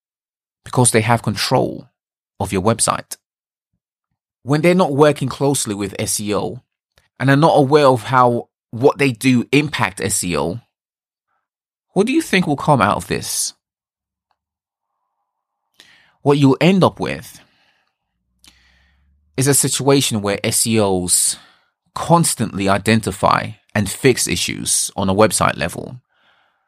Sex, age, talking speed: male, 20-39, 120 wpm